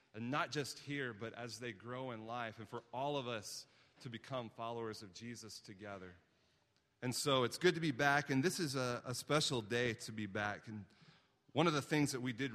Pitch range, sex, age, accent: 110-130 Hz, male, 30-49, American